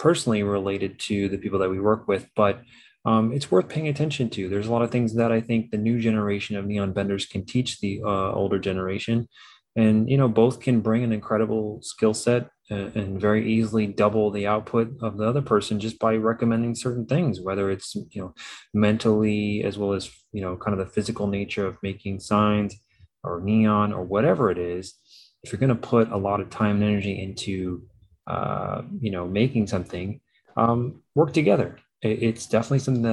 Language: English